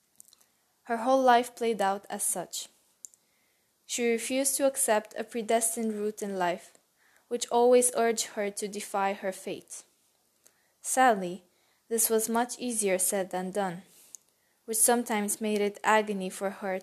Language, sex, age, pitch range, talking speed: English, female, 20-39, 195-230 Hz, 140 wpm